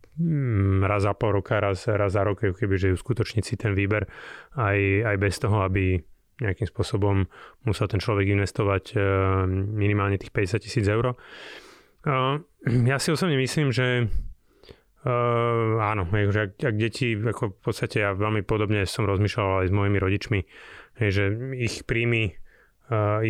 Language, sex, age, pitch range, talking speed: Slovak, male, 30-49, 100-115 Hz, 145 wpm